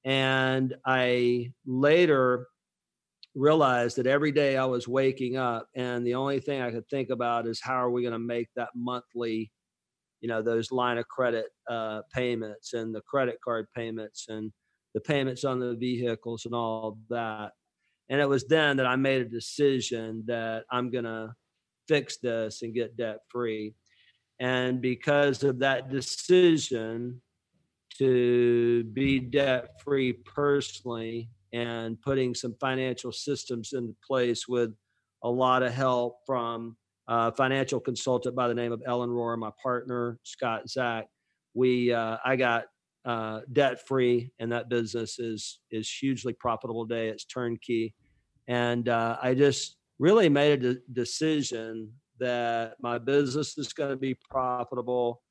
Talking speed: 150 wpm